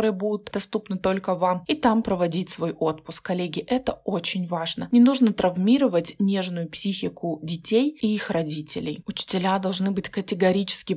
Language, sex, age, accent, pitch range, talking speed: Russian, female, 20-39, native, 180-230 Hz, 140 wpm